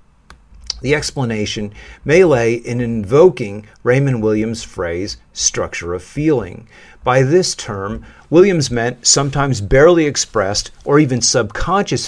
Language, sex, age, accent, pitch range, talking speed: French, male, 50-69, American, 110-140 Hz, 115 wpm